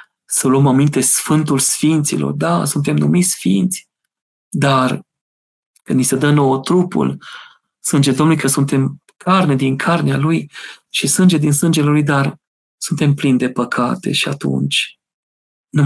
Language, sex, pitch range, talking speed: Romanian, male, 140-185 Hz, 140 wpm